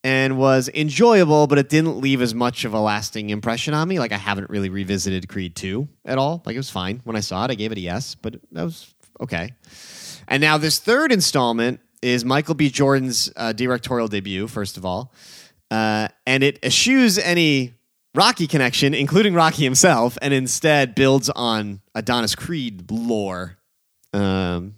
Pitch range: 100-140 Hz